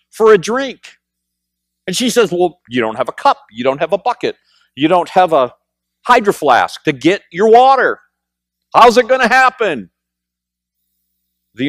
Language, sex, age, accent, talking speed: English, male, 50-69, American, 170 wpm